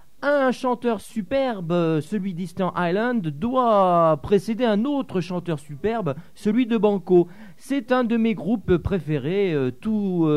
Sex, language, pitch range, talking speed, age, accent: male, French, 155-230 Hz, 140 wpm, 40-59, French